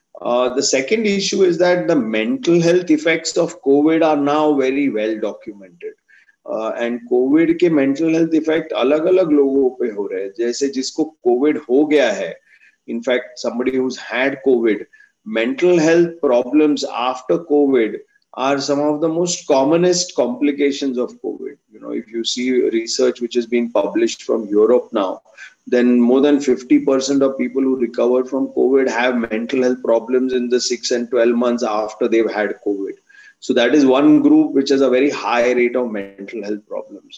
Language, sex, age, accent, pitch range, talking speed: Hindi, male, 30-49, native, 125-175 Hz, 175 wpm